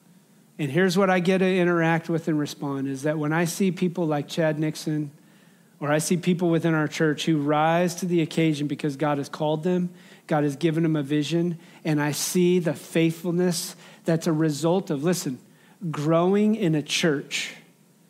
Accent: American